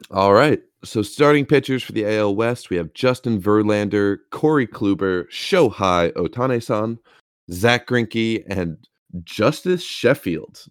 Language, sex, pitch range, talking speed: English, male, 90-115 Hz, 125 wpm